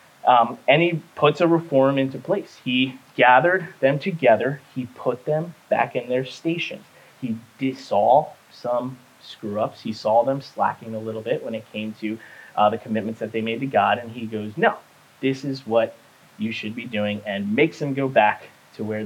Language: English